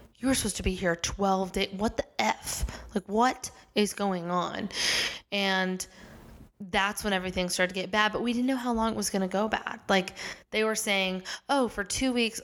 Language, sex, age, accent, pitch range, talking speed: English, female, 20-39, American, 180-200 Hz, 205 wpm